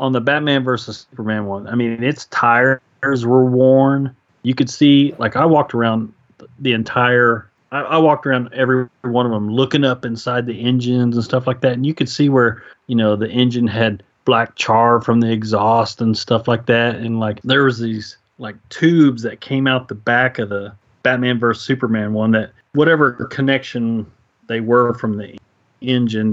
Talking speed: 190 wpm